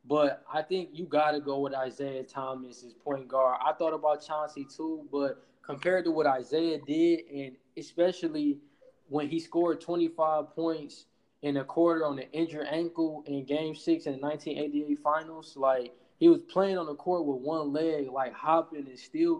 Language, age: English, 20-39